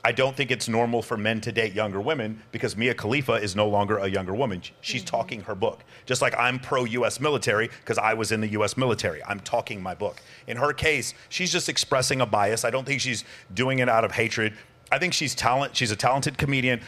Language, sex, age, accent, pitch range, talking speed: English, male, 40-59, American, 110-135 Hz, 235 wpm